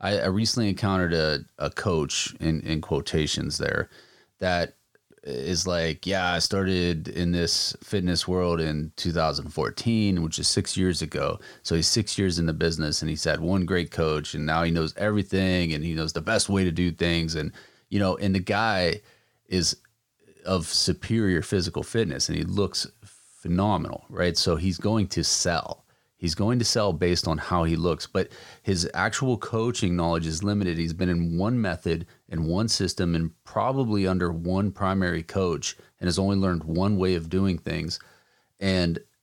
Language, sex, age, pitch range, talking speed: English, male, 30-49, 85-100 Hz, 175 wpm